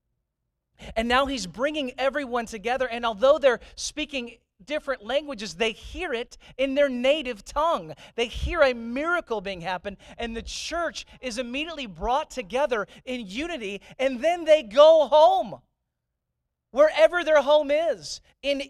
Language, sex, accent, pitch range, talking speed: English, male, American, 195-290 Hz, 140 wpm